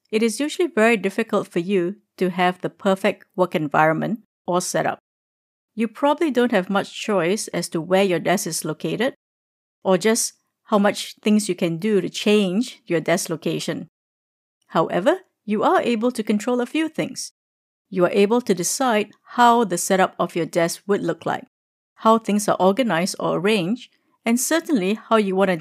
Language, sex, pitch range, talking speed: English, female, 180-225 Hz, 180 wpm